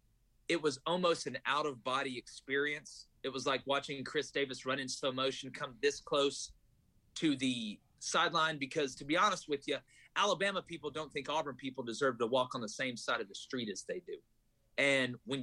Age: 30-49